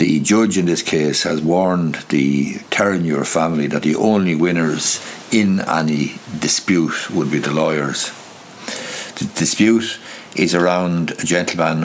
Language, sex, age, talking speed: English, male, 60-79, 135 wpm